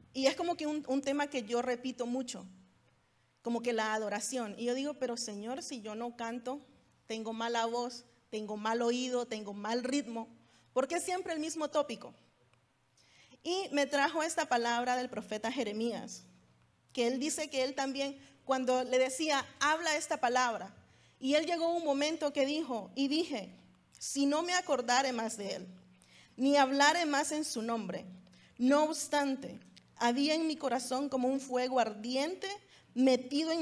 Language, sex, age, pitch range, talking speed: English, female, 30-49, 235-295 Hz, 165 wpm